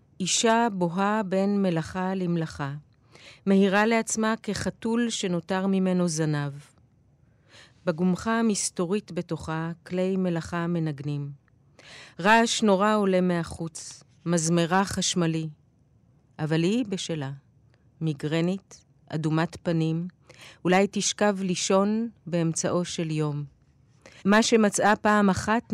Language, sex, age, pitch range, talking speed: Hebrew, female, 30-49, 150-195 Hz, 90 wpm